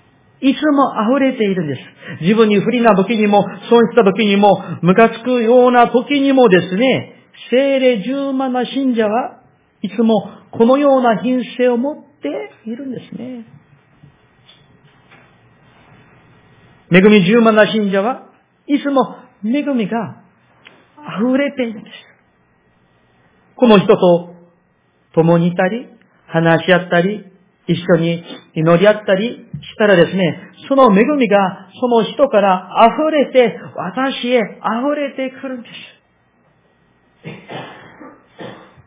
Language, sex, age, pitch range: Japanese, male, 40-59, 170-245 Hz